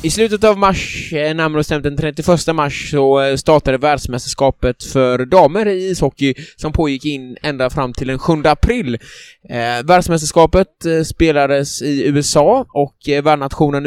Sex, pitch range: male, 130-155 Hz